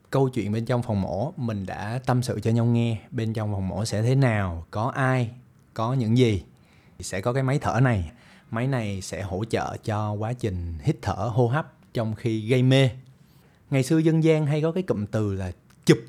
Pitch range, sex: 110-135 Hz, male